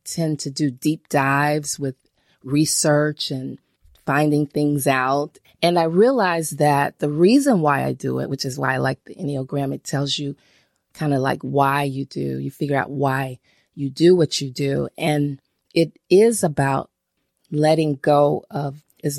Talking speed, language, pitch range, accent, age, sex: 170 wpm, English, 140-165 Hz, American, 30-49, female